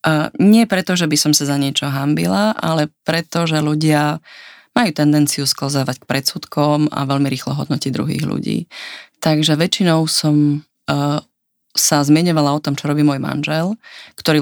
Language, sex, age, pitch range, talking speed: Slovak, female, 30-49, 140-160 Hz, 145 wpm